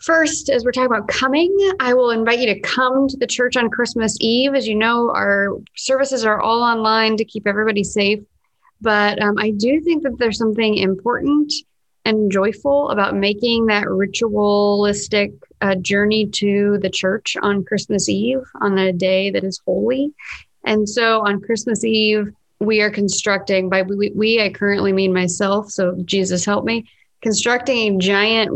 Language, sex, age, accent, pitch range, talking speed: English, female, 30-49, American, 185-220 Hz, 170 wpm